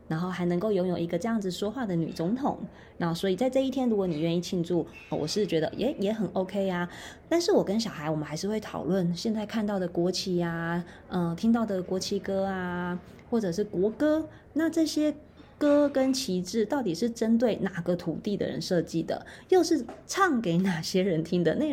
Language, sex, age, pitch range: Chinese, female, 20-39, 175-240 Hz